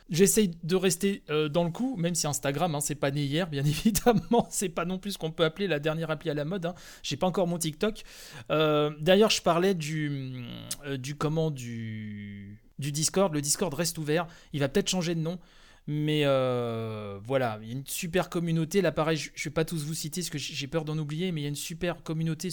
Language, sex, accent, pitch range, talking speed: French, male, French, 145-170 Hz, 235 wpm